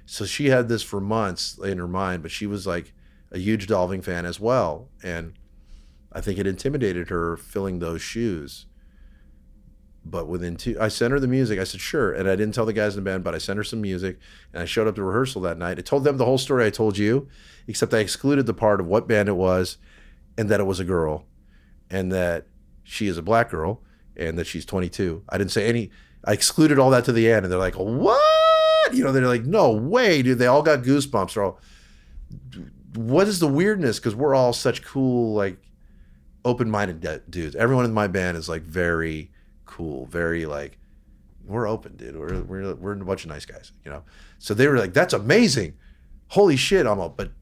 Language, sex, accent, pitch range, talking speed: English, male, American, 75-115 Hz, 220 wpm